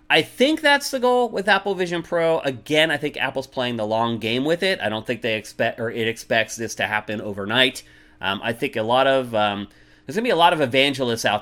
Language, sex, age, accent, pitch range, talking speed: English, male, 30-49, American, 115-165 Hz, 240 wpm